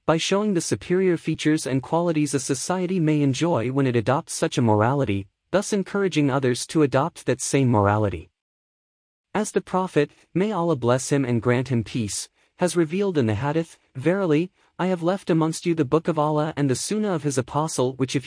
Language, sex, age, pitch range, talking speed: English, male, 30-49, 120-170 Hz, 195 wpm